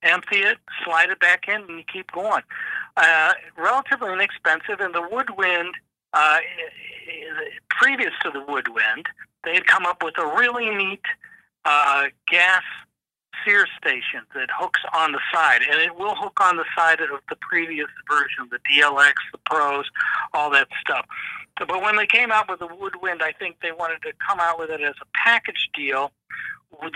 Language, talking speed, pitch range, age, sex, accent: English, 175 wpm, 160-215 Hz, 60-79, male, American